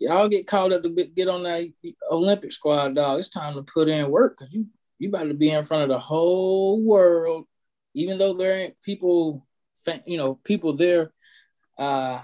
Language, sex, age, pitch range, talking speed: English, male, 20-39, 130-205 Hz, 190 wpm